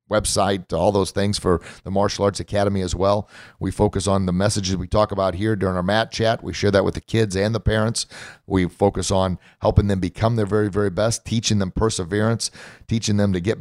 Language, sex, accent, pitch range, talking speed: English, male, American, 95-110 Hz, 225 wpm